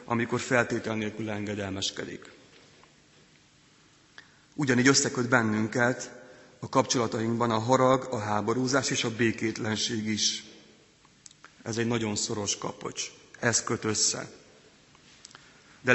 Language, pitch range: Hungarian, 110-125 Hz